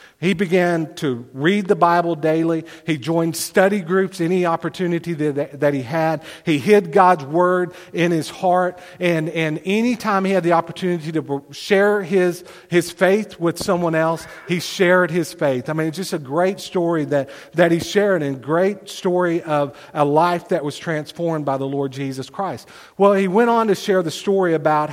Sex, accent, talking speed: male, American, 190 wpm